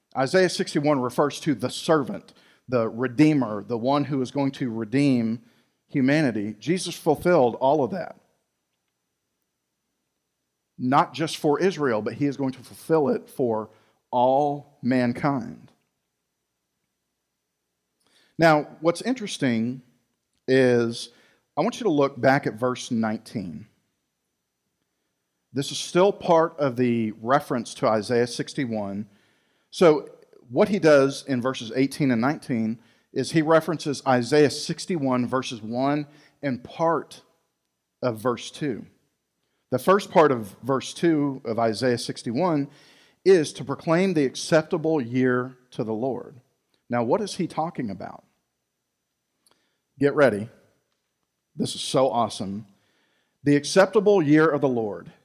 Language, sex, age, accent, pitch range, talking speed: English, male, 40-59, American, 120-155 Hz, 125 wpm